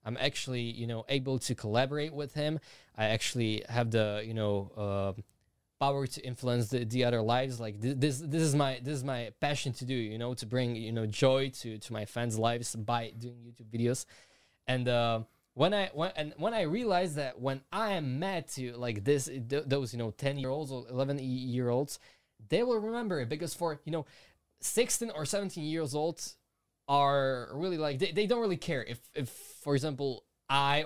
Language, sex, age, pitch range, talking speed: Slovak, male, 20-39, 115-145 Hz, 205 wpm